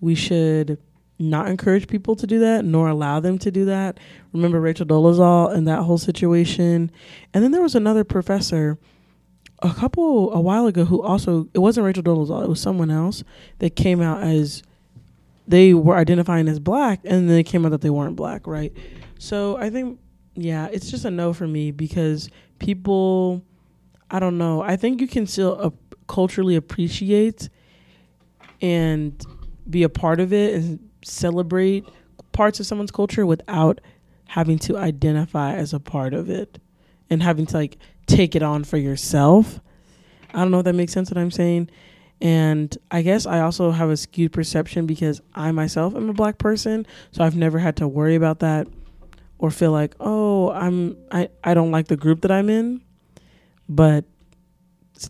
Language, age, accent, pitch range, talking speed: English, 20-39, American, 155-190 Hz, 180 wpm